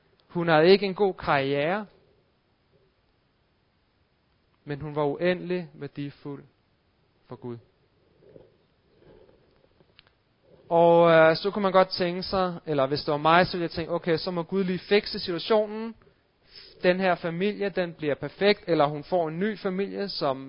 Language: Danish